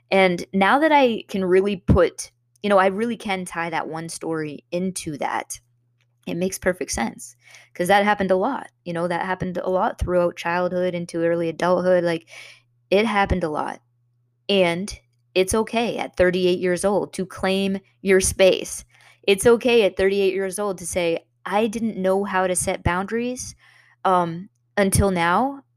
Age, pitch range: 20-39, 145-190 Hz